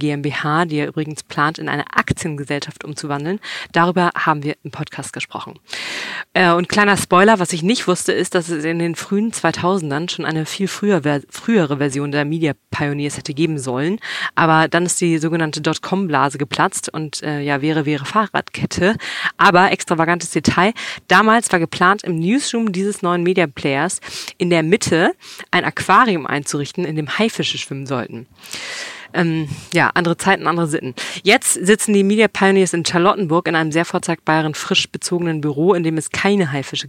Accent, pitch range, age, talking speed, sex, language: German, 150-185 Hz, 40-59, 165 wpm, female, German